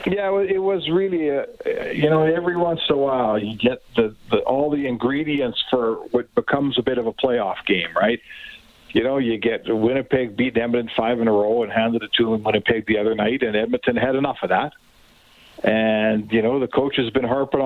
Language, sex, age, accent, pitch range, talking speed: English, male, 50-69, American, 110-145 Hz, 210 wpm